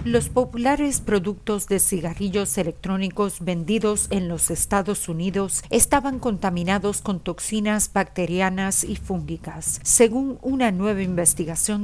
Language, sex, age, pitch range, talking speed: Spanish, female, 40-59, 190-235 Hz, 110 wpm